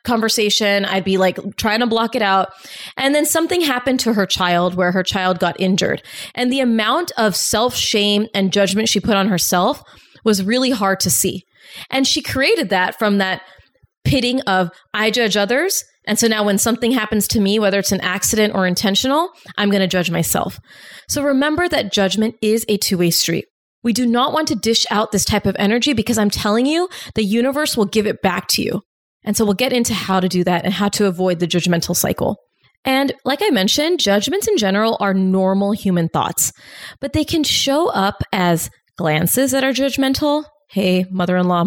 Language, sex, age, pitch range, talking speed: English, female, 20-39, 190-255 Hz, 195 wpm